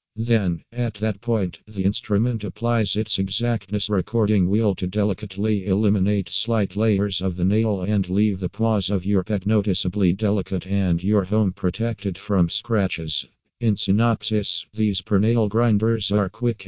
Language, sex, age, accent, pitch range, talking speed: English, male, 50-69, American, 95-110 Hz, 150 wpm